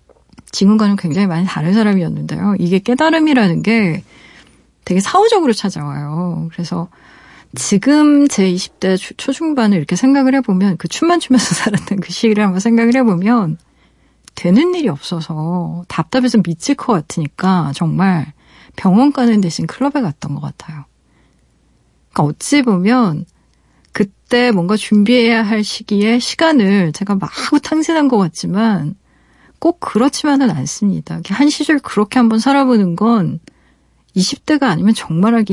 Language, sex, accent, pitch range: Korean, female, native, 180-255 Hz